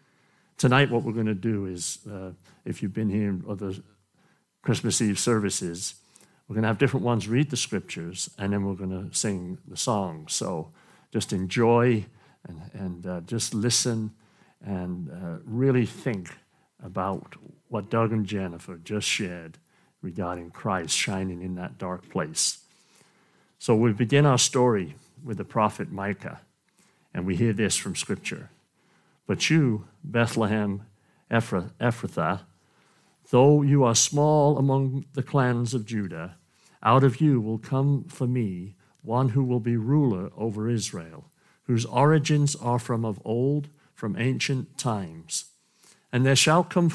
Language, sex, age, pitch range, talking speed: English, male, 60-79, 100-135 Hz, 150 wpm